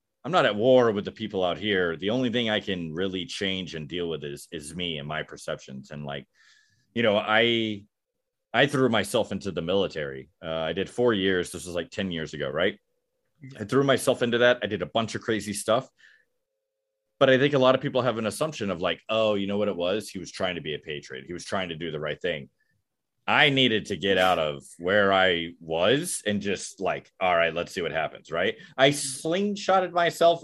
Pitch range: 90-130 Hz